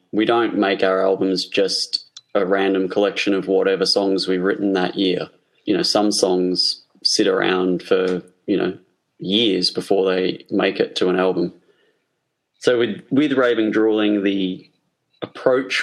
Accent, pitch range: Australian, 95-105 Hz